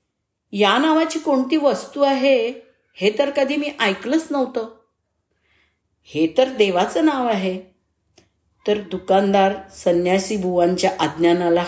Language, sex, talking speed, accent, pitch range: Marathi, female, 135 wpm, native, 160-220 Hz